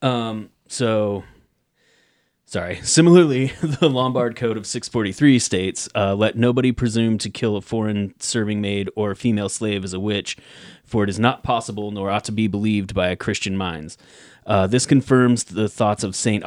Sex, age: male, 30-49